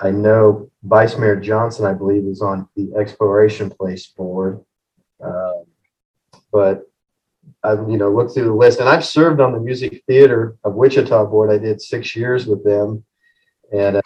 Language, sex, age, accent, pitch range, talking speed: English, male, 40-59, American, 100-130 Hz, 165 wpm